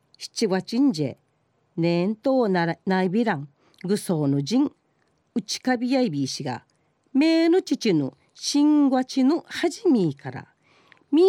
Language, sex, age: Japanese, female, 40-59